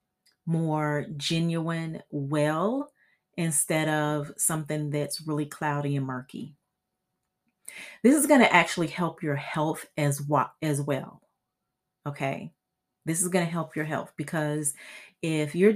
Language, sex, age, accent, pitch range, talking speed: English, female, 30-49, American, 150-185 Hz, 125 wpm